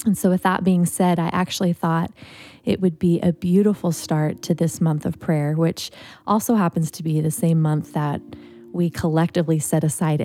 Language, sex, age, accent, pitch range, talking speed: English, female, 20-39, American, 155-180 Hz, 195 wpm